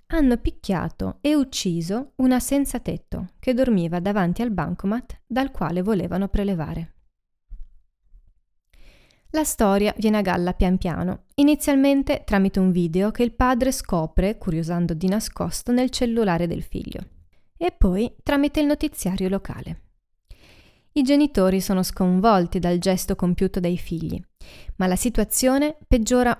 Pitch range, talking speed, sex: 180-250 Hz, 130 wpm, female